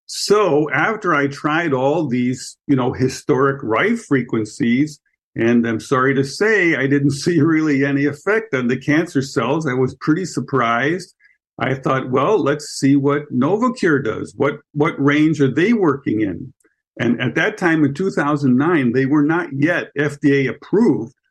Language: English